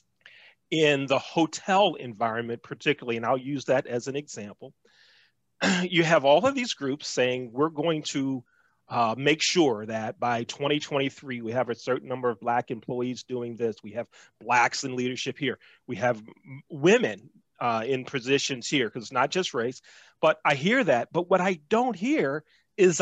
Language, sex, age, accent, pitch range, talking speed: English, male, 40-59, American, 135-225 Hz, 170 wpm